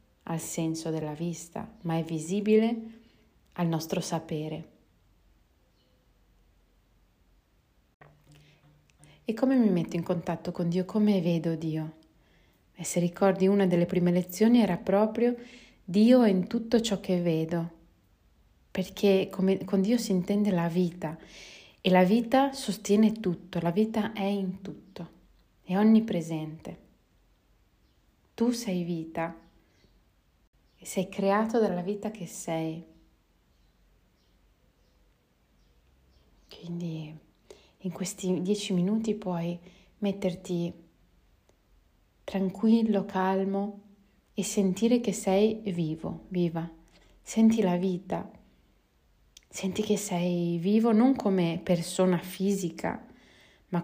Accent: native